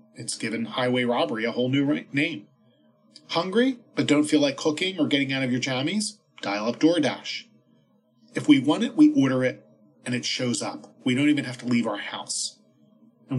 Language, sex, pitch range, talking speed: English, male, 120-160 Hz, 195 wpm